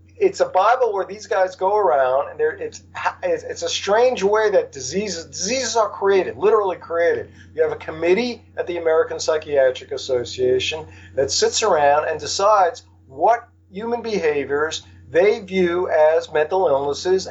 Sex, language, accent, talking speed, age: male, English, American, 150 wpm, 50-69